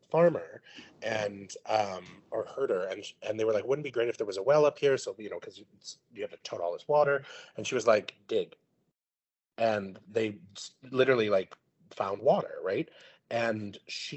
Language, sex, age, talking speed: English, male, 30-49, 195 wpm